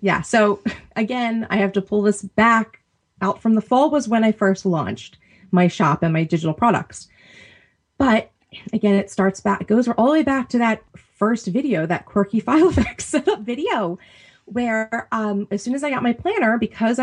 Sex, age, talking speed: female, 30-49, 190 wpm